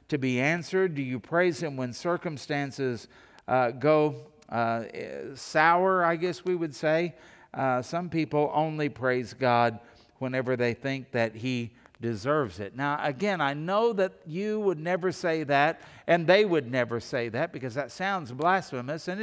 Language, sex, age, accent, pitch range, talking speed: English, male, 50-69, American, 130-175 Hz, 160 wpm